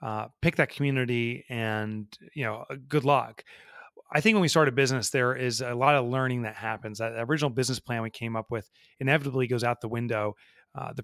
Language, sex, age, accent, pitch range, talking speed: English, male, 30-49, American, 120-150 Hz, 210 wpm